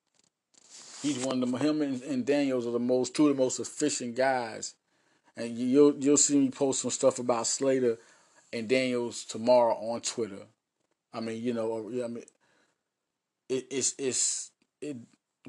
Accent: American